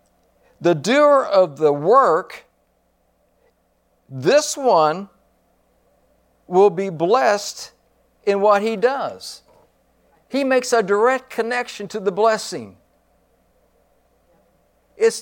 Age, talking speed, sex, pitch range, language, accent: 60-79, 90 wpm, male, 155-225 Hz, English, American